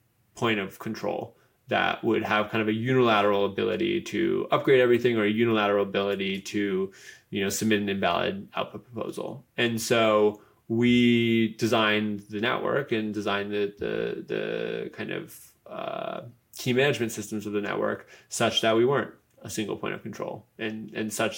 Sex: male